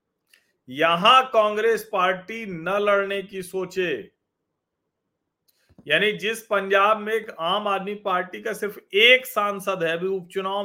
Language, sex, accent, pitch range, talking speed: Hindi, male, native, 185-245 Hz, 120 wpm